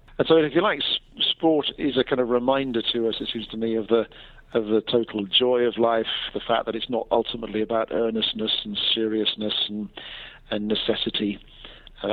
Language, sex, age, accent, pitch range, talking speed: English, male, 50-69, British, 105-120 Hz, 195 wpm